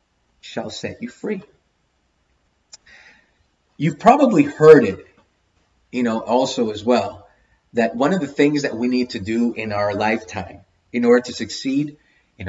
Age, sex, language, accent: 30-49, male, English, American